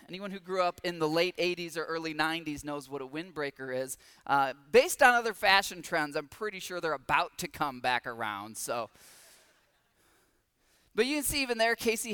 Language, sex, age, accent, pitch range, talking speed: English, male, 20-39, American, 160-225 Hz, 195 wpm